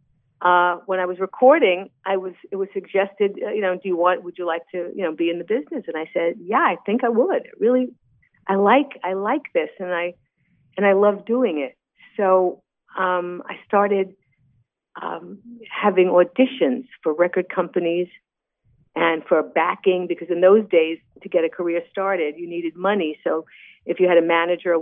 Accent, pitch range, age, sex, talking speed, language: American, 160-195 Hz, 50-69, female, 190 wpm, English